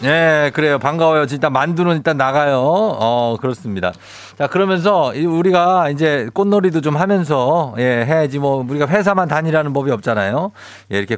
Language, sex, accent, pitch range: Korean, male, native, 115-175 Hz